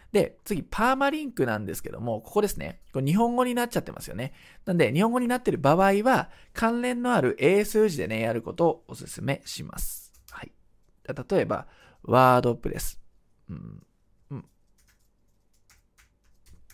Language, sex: Japanese, male